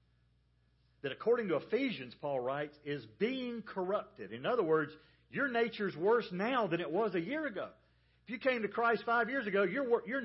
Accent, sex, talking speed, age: American, male, 185 wpm, 50-69